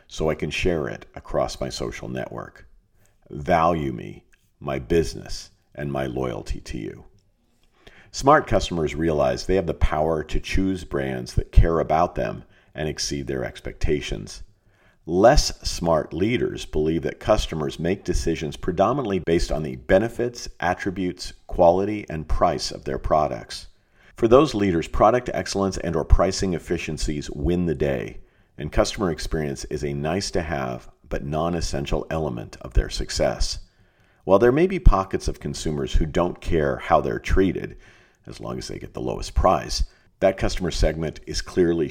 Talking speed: 150 wpm